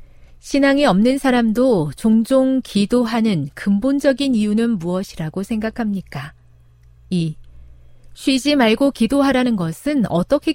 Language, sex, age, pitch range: Korean, female, 40-59, 150-240 Hz